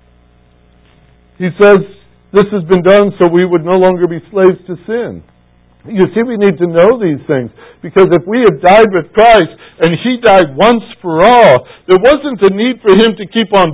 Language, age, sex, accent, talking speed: English, 60-79, male, American, 195 wpm